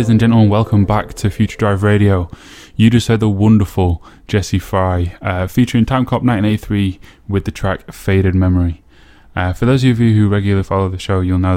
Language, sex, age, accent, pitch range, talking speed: English, male, 10-29, British, 95-110 Hz, 195 wpm